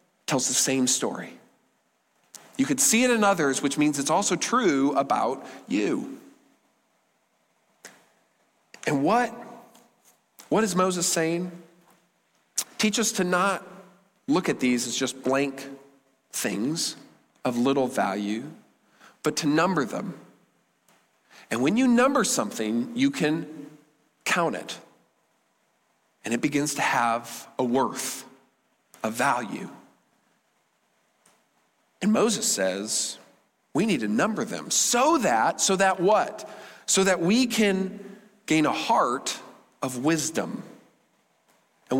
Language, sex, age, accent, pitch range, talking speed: English, male, 40-59, American, 150-225 Hz, 115 wpm